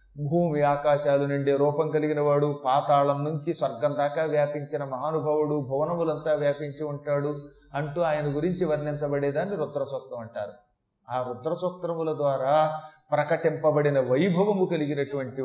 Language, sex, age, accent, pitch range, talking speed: Telugu, male, 30-49, native, 140-170 Hz, 100 wpm